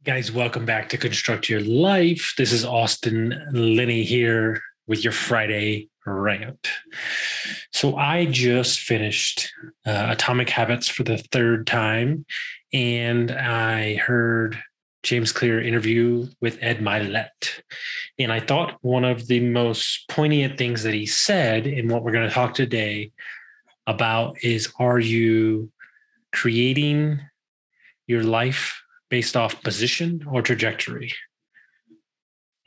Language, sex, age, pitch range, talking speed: English, male, 20-39, 110-130 Hz, 120 wpm